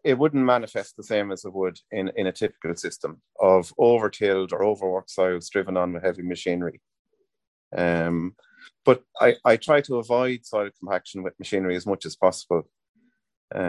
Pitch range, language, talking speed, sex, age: 95-120 Hz, English, 170 wpm, male, 30-49